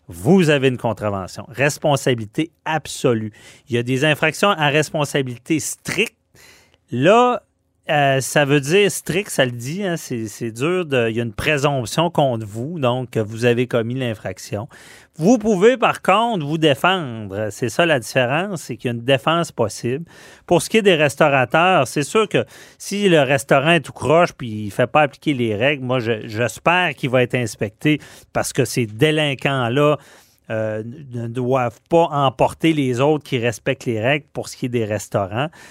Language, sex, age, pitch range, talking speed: French, male, 40-59, 115-150 Hz, 175 wpm